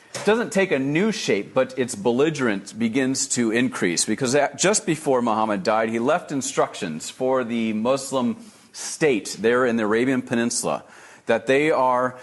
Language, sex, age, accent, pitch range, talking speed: English, male, 40-59, American, 110-150 Hz, 155 wpm